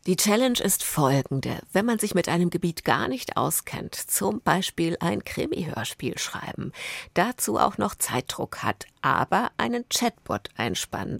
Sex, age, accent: female, 50-69, German